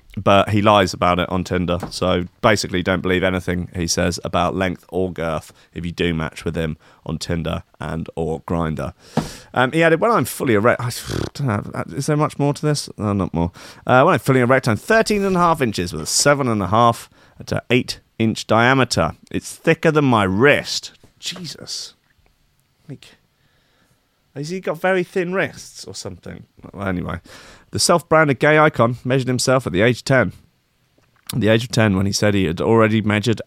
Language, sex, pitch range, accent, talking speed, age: English, male, 95-130 Hz, British, 195 wpm, 30-49